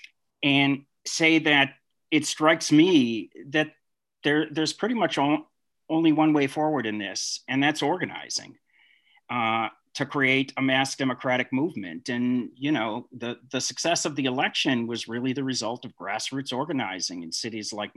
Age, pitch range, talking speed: 40-59, 120-150 Hz, 155 wpm